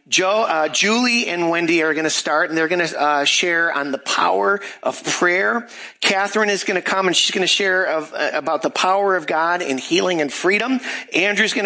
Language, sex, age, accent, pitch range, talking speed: English, male, 50-69, American, 150-185 Hz, 220 wpm